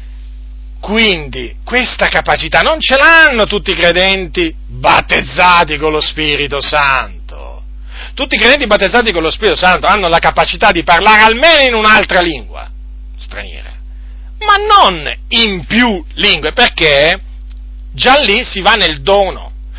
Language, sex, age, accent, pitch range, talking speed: Italian, male, 40-59, native, 135-230 Hz, 135 wpm